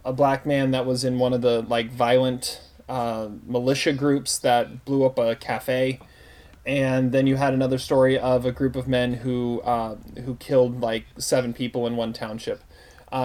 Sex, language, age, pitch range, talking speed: male, English, 30-49, 125-150 Hz, 185 wpm